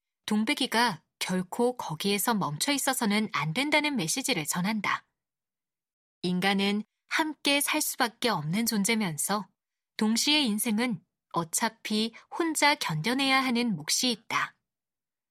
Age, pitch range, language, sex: 20-39, 200-275 Hz, Korean, female